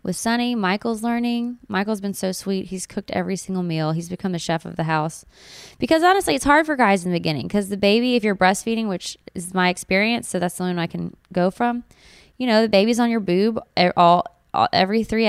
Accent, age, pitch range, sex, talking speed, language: American, 20-39, 180-225 Hz, female, 230 wpm, English